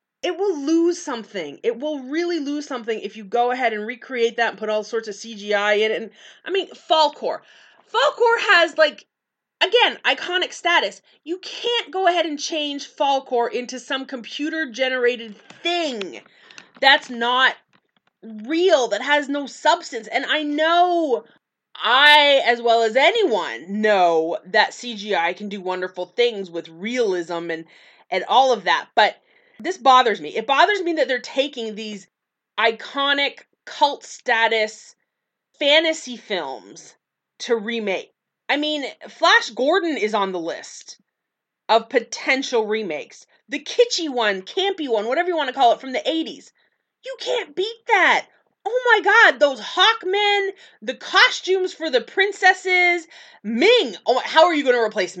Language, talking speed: English, 150 wpm